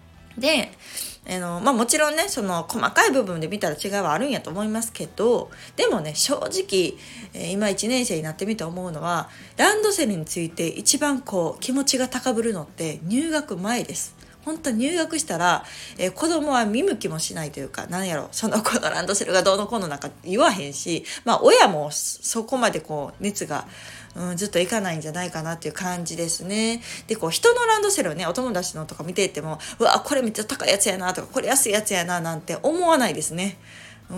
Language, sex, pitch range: Japanese, female, 165-255 Hz